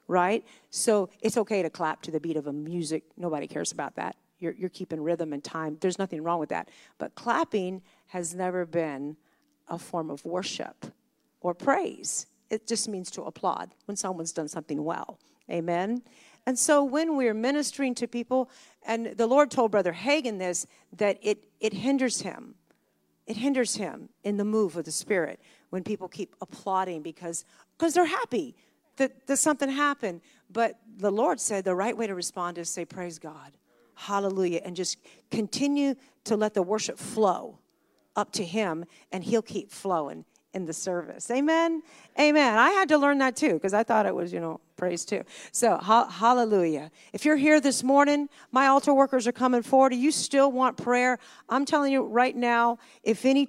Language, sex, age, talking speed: English, female, 50-69, 180 wpm